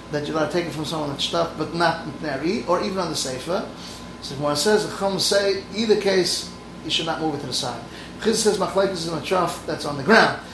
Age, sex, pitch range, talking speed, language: 30-49, male, 150-185 Hz, 245 wpm, English